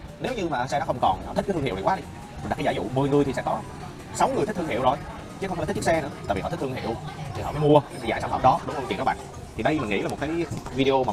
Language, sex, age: Vietnamese, male, 20-39